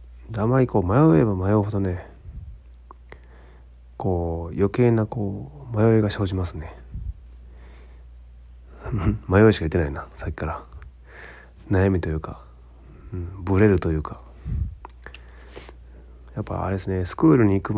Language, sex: Japanese, male